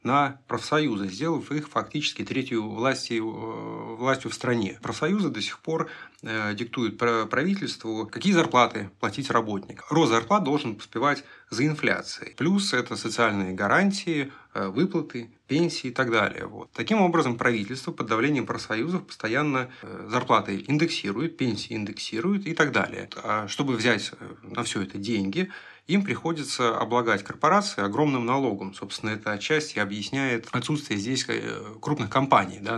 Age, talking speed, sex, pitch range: 30-49, 130 wpm, male, 110-150 Hz